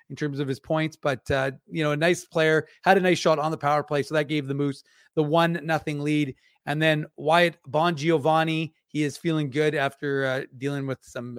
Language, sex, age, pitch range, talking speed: English, male, 30-49, 140-170 Hz, 225 wpm